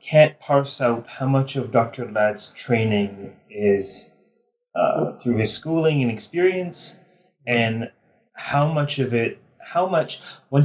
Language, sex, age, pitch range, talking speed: English, male, 30-49, 105-145 Hz, 135 wpm